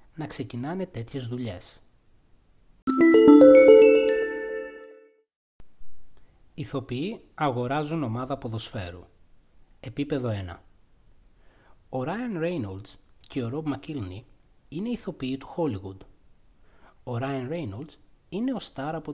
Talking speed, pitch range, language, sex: 90 wpm, 105-160 Hz, Greek, male